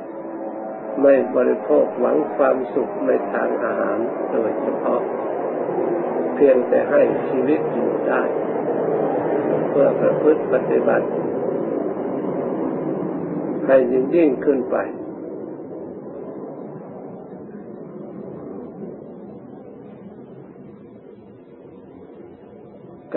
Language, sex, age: Thai, male, 50-69